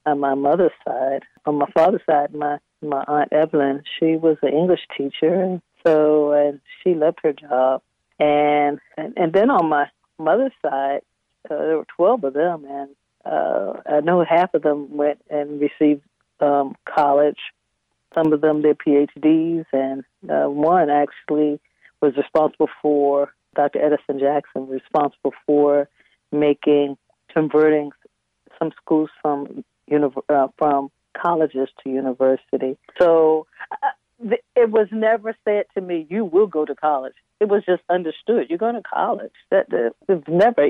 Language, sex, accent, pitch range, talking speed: English, female, American, 145-170 Hz, 155 wpm